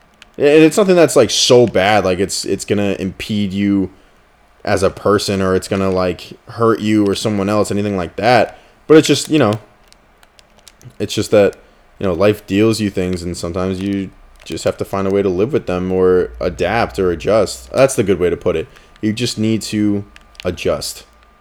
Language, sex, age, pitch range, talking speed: English, male, 20-39, 90-105 Hz, 195 wpm